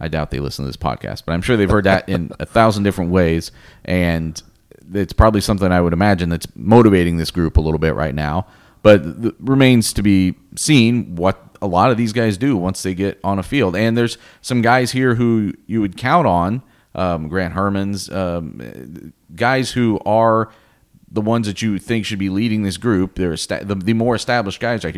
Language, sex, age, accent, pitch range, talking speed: English, male, 30-49, American, 85-115 Hz, 205 wpm